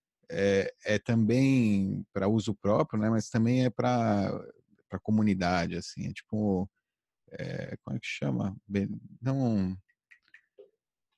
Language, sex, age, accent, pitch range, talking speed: Portuguese, male, 40-59, Brazilian, 105-130 Hz, 120 wpm